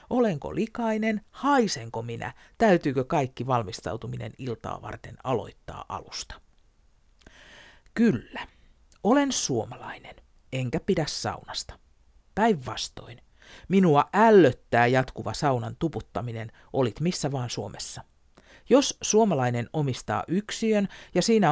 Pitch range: 115-175 Hz